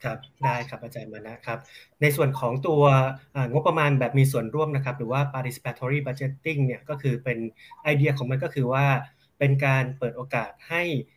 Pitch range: 120-145 Hz